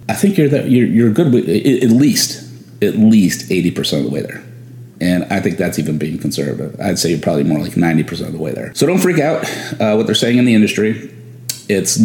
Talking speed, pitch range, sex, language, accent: 245 wpm, 95-120 Hz, male, English, American